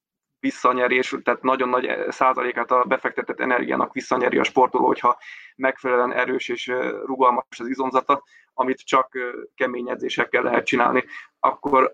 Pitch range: 125-140 Hz